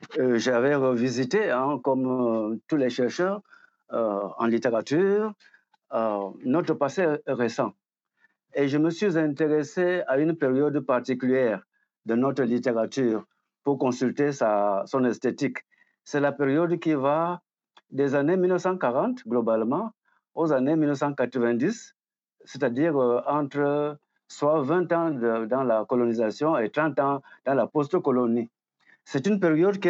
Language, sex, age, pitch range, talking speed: French, male, 60-79, 120-165 Hz, 130 wpm